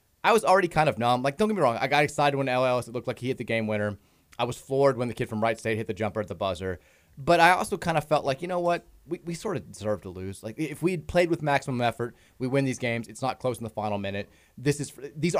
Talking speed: 305 wpm